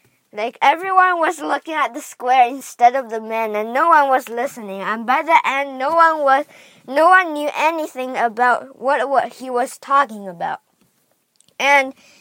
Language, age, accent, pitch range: Chinese, 20-39, American, 225-300 Hz